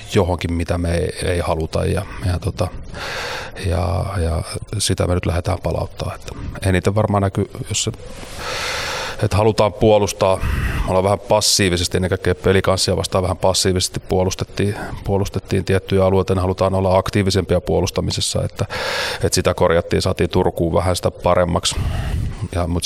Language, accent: Finnish, native